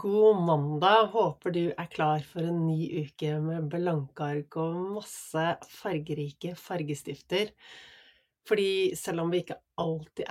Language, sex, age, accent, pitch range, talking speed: English, female, 30-49, Swedish, 150-175 Hz, 135 wpm